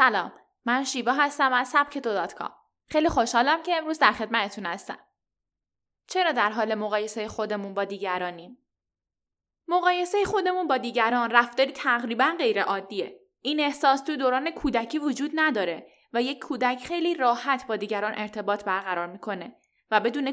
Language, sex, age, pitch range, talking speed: Persian, female, 10-29, 215-290 Hz, 150 wpm